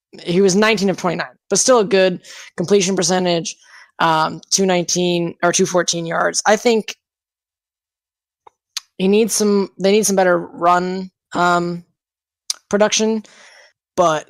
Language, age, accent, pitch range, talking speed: English, 10-29, American, 170-195 Hz, 120 wpm